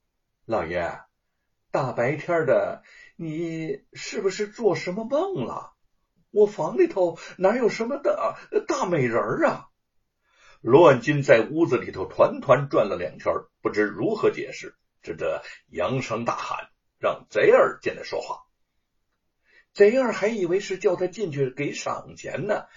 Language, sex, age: Chinese, male, 60-79